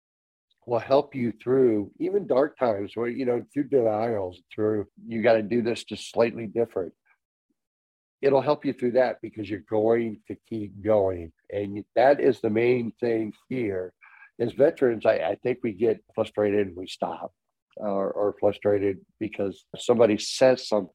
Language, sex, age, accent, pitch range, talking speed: English, male, 60-79, American, 105-130 Hz, 165 wpm